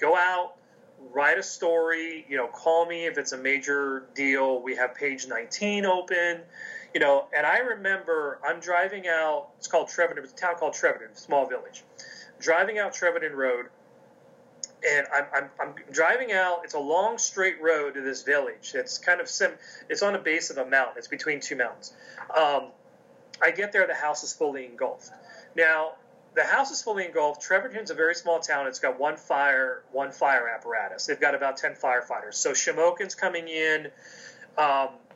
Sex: male